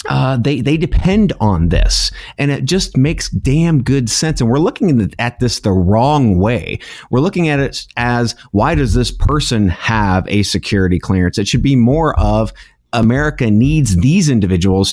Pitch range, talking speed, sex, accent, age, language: 100-140 Hz, 175 wpm, male, American, 30-49, English